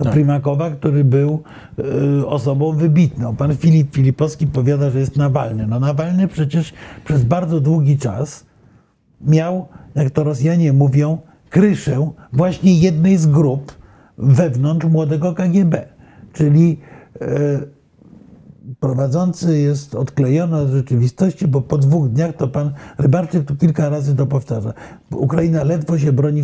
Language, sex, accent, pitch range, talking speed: Polish, male, native, 130-160 Hz, 130 wpm